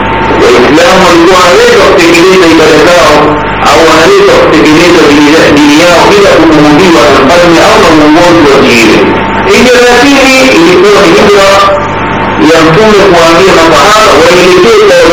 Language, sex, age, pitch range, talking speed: Swahili, male, 50-69, 155-225 Hz, 75 wpm